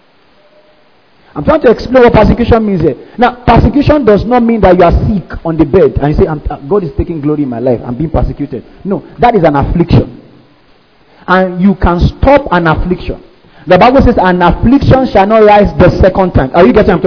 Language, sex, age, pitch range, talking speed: English, male, 40-59, 160-230 Hz, 210 wpm